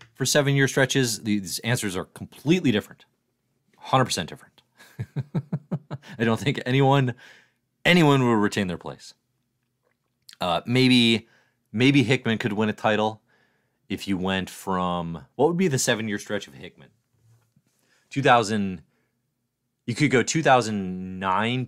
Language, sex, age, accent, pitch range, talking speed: English, male, 30-49, American, 100-125 Hz, 140 wpm